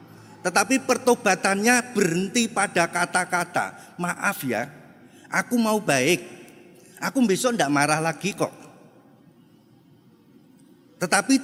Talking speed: 90 wpm